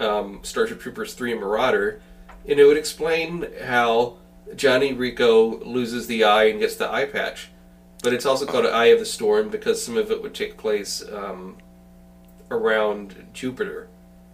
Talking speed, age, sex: 160 wpm, 30-49, male